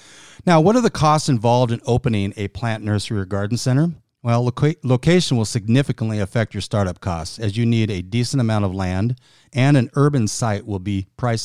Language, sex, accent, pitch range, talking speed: English, male, American, 100-130 Hz, 195 wpm